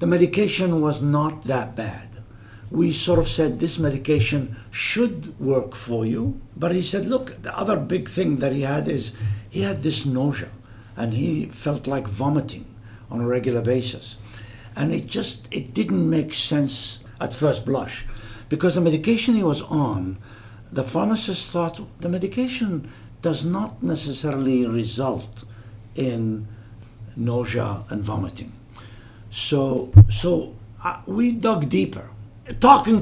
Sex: male